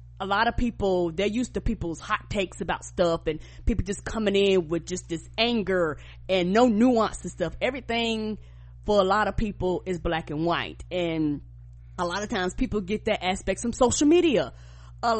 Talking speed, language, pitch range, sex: 195 wpm, English, 170-220 Hz, female